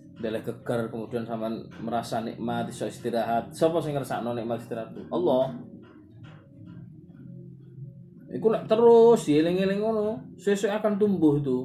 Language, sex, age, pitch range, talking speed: Malay, male, 20-39, 120-170 Hz, 120 wpm